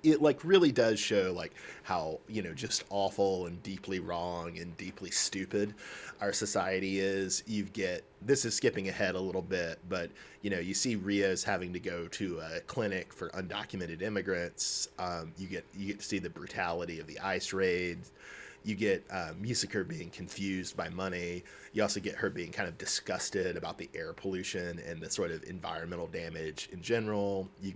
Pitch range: 90-105 Hz